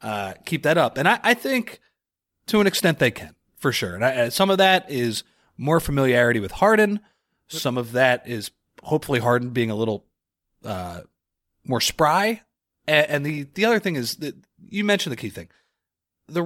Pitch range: 110-155 Hz